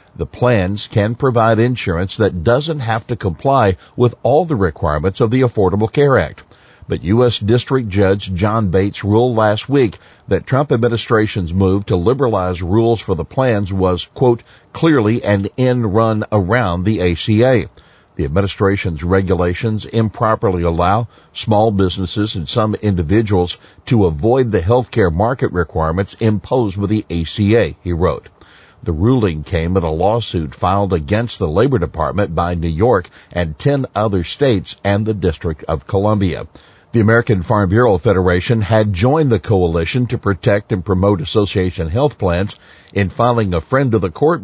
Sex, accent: male, American